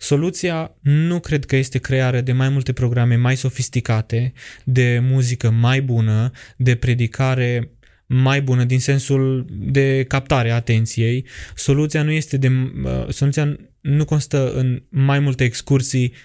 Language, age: Romanian, 20-39